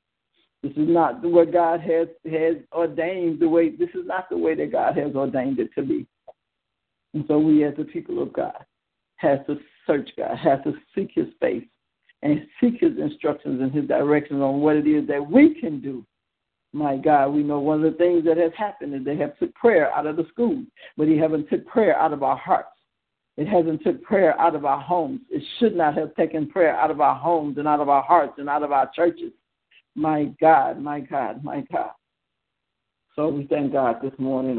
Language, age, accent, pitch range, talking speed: English, 60-79, American, 145-170 Hz, 215 wpm